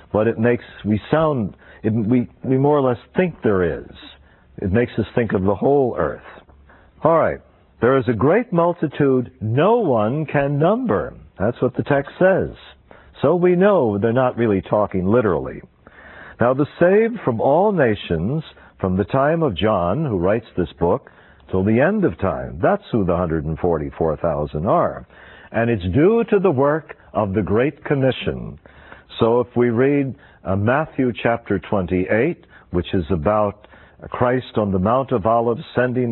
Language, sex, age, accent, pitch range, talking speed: English, male, 60-79, American, 95-140 Hz, 165 wpm